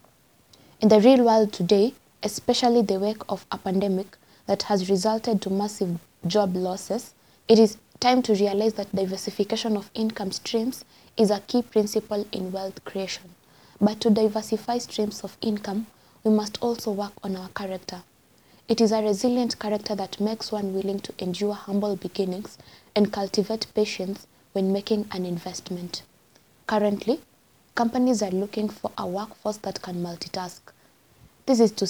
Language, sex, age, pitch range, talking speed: English, female, 20-39, 190-220 Hz, 150 wpm